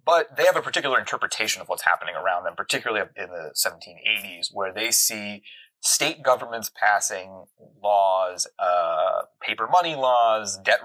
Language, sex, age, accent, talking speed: English, male, 30-49, American, 150 wpm